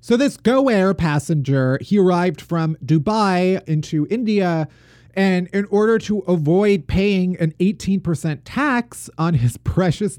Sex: male